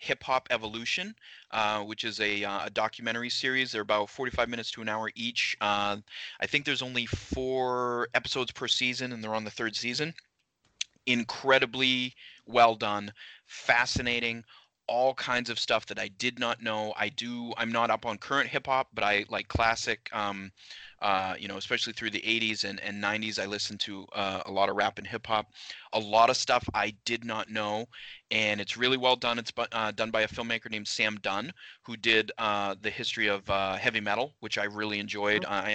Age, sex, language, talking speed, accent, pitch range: 30-49, male, English, 195 wpm, American, 105-125 Hz